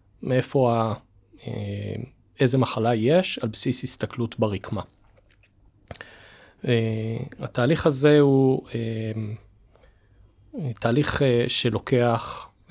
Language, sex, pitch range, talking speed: Hebrew, male, 110-135 Hz, 60 wpm